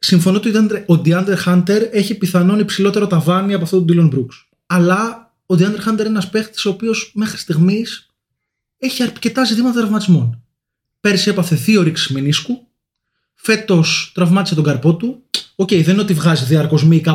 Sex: male